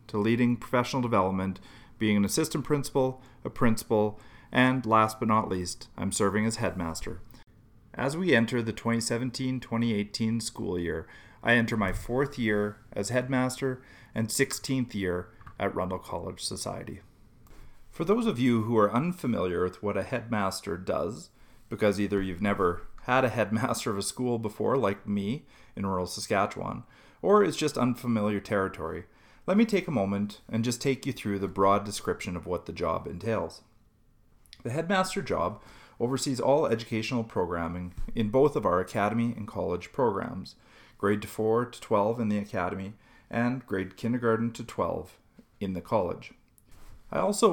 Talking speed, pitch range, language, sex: 155 wpm, 105-125 Hz, English, male